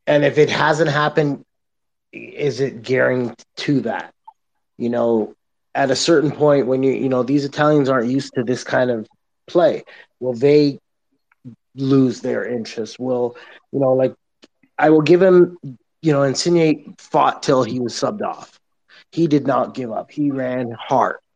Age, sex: 30-49, male